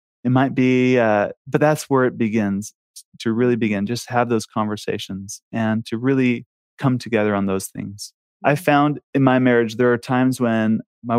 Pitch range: 110-135 Hz